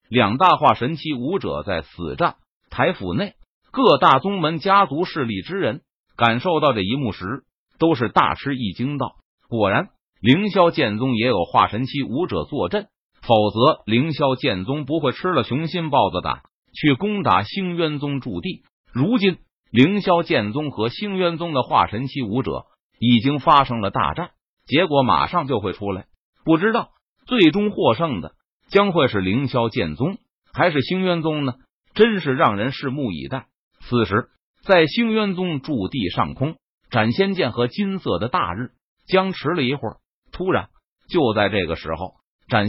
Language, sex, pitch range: Chinese, male, 120-175 Hz